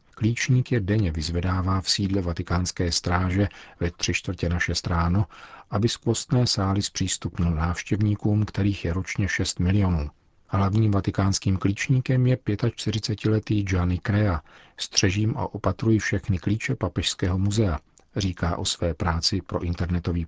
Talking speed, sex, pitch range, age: 130 wpm, male, 85-105 Hz, 40-59